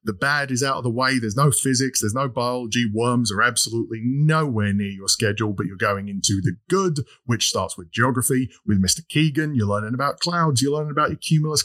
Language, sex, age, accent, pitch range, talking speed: English, male, 30-49, British, 115-155 Hz, 215 wpm